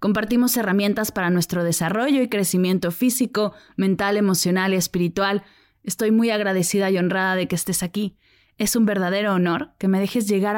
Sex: female